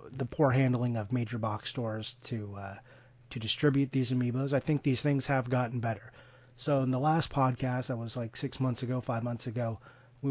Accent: American